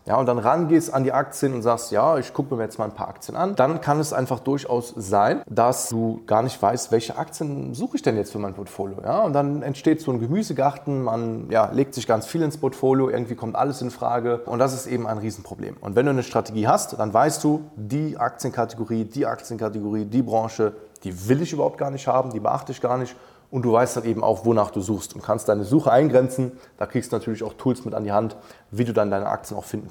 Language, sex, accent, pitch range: German, male, German, 110-135 Hz